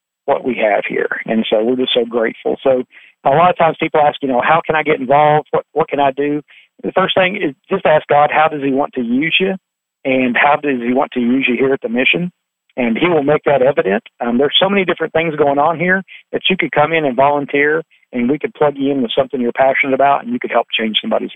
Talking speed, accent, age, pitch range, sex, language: 265 wpm, American, 50-69, 130-160 Hz, male, English